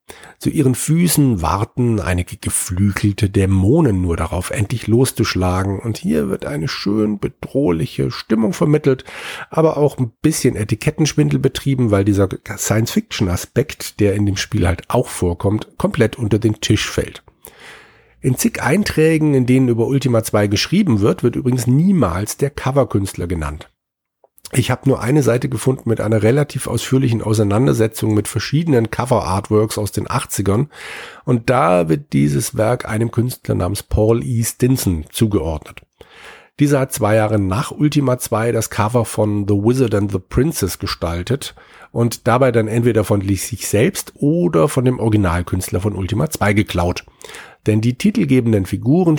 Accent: German